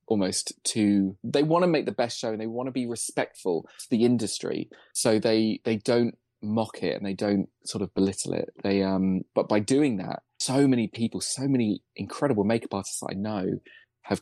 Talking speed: 205 wpm